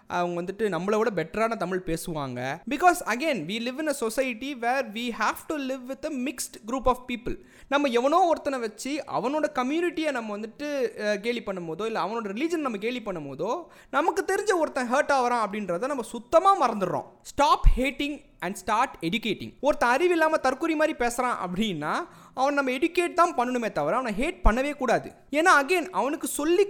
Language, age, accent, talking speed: Tamil, 20-39, native, 170 wpm